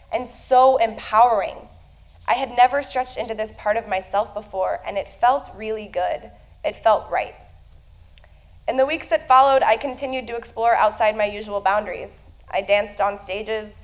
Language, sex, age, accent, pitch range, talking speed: English, female, 20-39, American, 185-245 Hz, 165 wpm